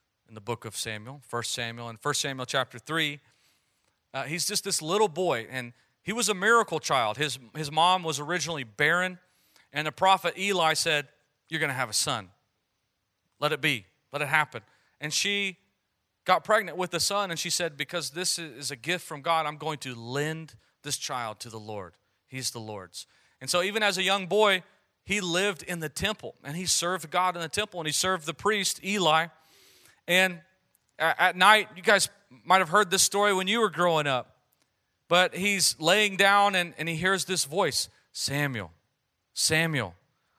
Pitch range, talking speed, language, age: 140-200 Hz, 190 wpm, English, 40-59